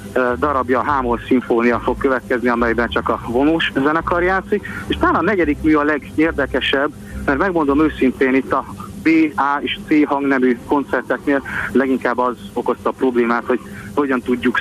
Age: 30-49